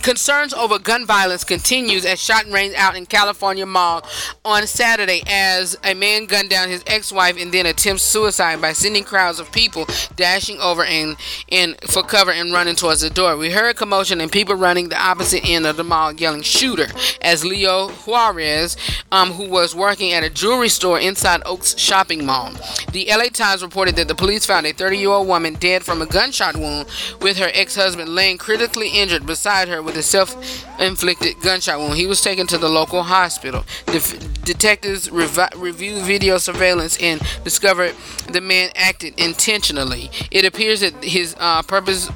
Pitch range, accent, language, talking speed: 165-195 Hz, American, English, 180 wpm